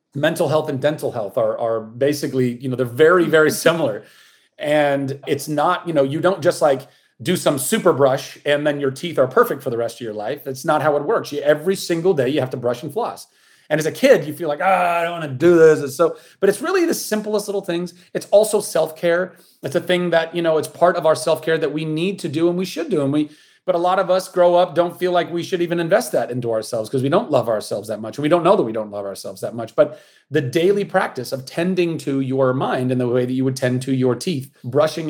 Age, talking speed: 30-49, 270 wpm